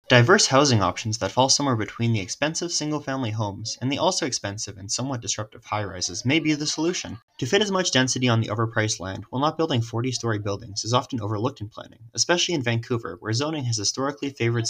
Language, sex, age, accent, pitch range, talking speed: English, male, 30-49, American, 110-135 Hz, 205 wpm